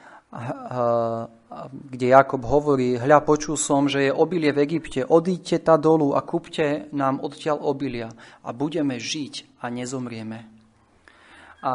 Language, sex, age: Slovak, male, 30-49